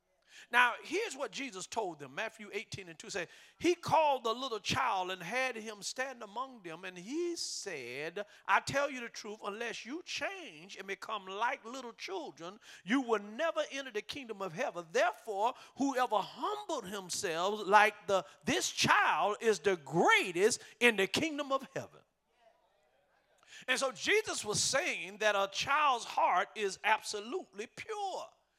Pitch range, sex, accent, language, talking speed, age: 205-295 Hz, male, American, English, 155 wpm, 50-69